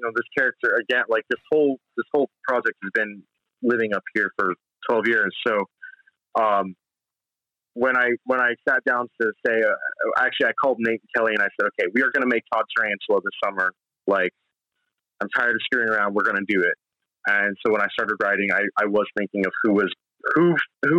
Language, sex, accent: English, male, American